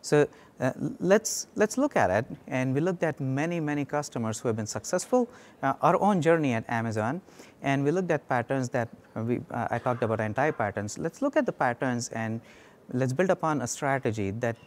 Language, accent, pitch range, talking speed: English, Indian, 115-145 Hz, 195 wpm